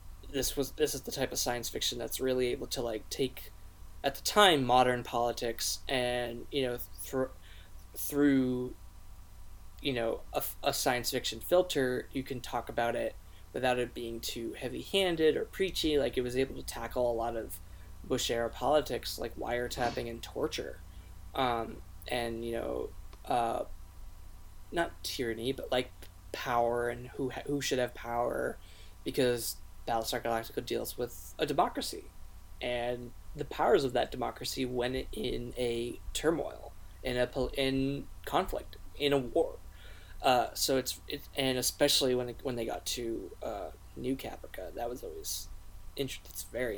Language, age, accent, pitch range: English, 20-39, American, 90-130 Hz